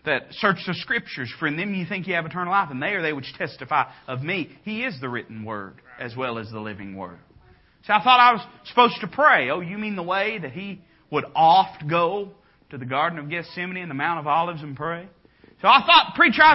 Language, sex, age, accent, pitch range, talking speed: English, male, 30-49, American, 150-235 Hz, 245 wpm